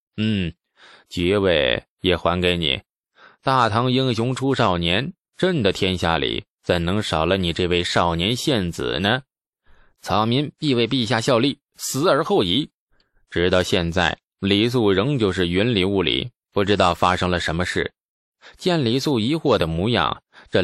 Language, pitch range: Chinese, 90-140 Hz